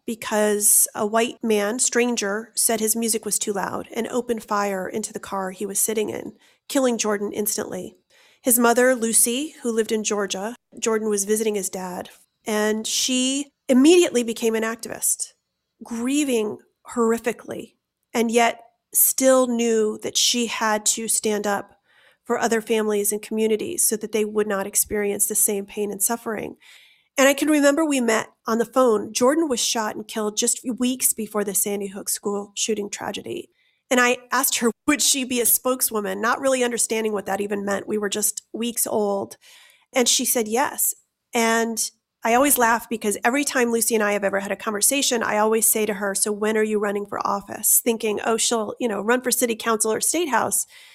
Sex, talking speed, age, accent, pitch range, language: female, 185 wpm, 40-59, American, 210-250 Hz, English